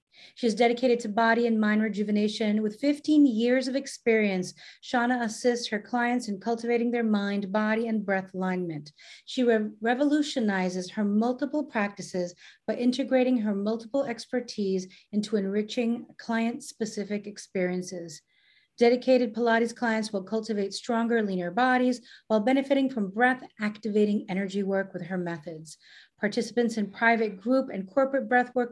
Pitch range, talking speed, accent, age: 200-245 Hz, 130 wpm, American, 40-59